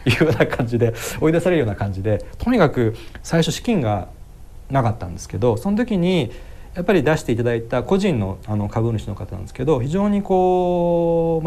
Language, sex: Japanese, male